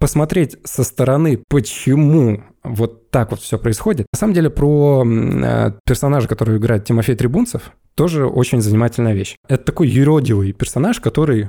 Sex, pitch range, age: male, 115-145 Hz, 20-39